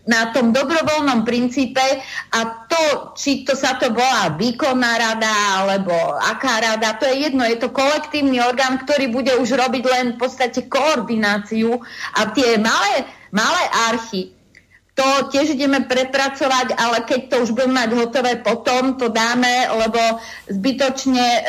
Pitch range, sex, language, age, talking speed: 220-260 Hz, female, Slovak, 40-59, 145 wpm